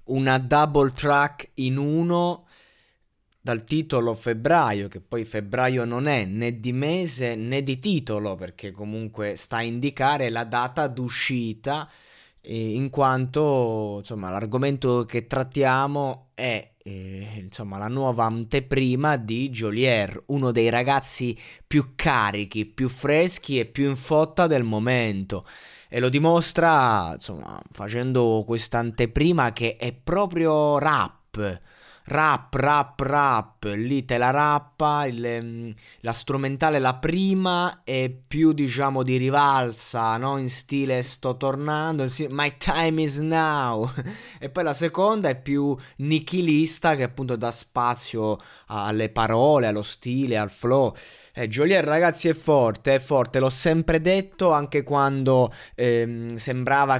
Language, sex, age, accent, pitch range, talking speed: Italian, male, 20-39, native, 115-145 Hz, 130 wpm